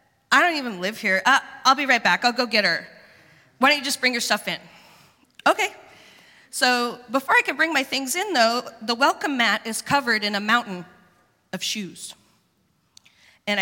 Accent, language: American, English